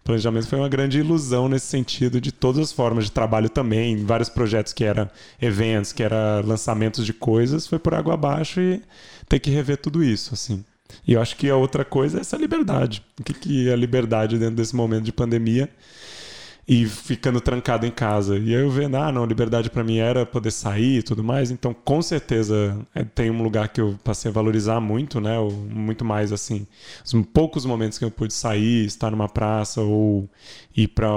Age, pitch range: 20-39, 110-135 Hz